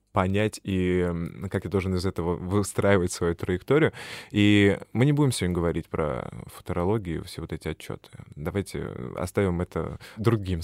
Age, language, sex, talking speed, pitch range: 20-39, Russian, male, 150 wpm, 90-115 Hz